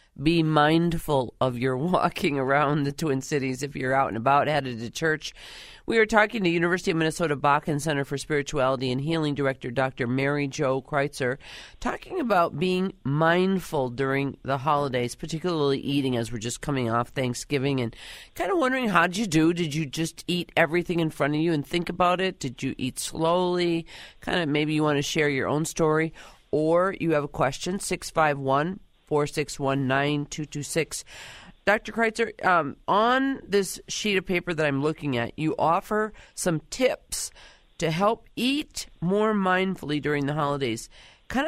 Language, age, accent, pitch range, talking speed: English, 40-59, American, 140-175 Hz, 170 wpm